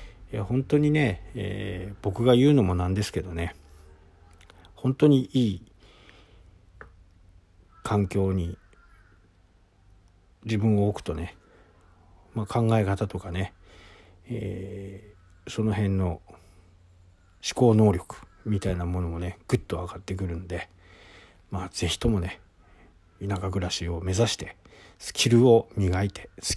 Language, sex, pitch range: Japanese, male, 90-105 Hz